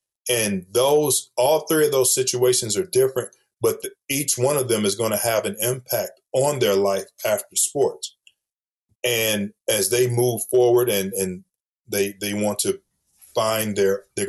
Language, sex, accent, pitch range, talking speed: English, male, American, 100-125 Hz, 170 wpm